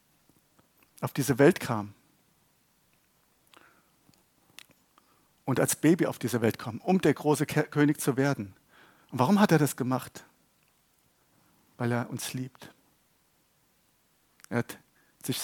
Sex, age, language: male, 50-69, German